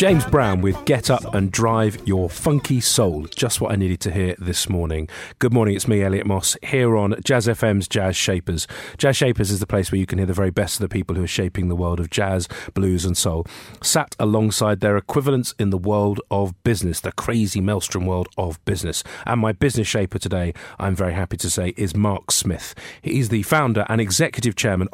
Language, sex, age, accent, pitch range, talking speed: English, male, 40-59, British, 90-110 Hz, 215 wpm